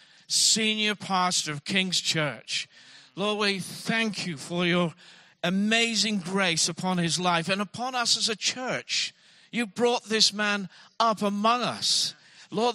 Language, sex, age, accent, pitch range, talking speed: English, male, 50-69, British, 165-215 Hz, 140 wpm